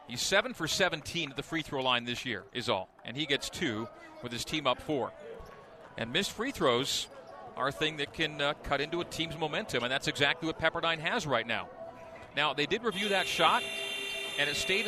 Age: 40-59